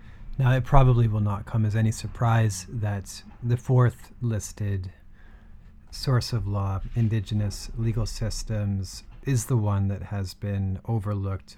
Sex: male